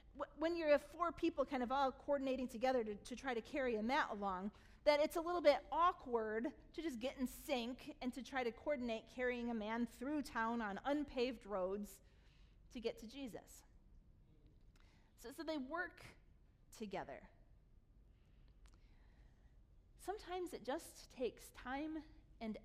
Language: English